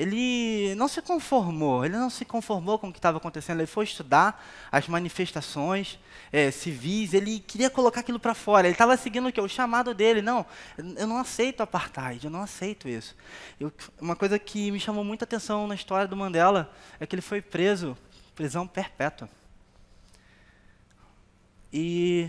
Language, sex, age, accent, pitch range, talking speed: Portuguese, male, 20-39, Brazilian, 140-225 Hz, 170 wpm